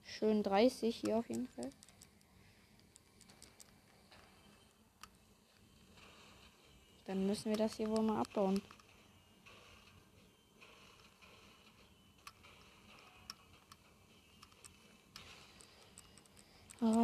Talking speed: 55 wpm